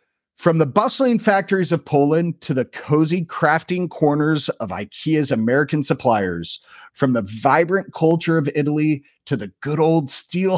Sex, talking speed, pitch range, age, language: male, 145 wpm, 125-170 Hz, 40-59, English